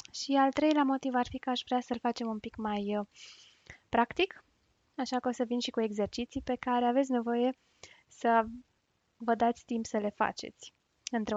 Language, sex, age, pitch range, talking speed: Romanian, female, 20-39, 220-285 Hz, 185 wpm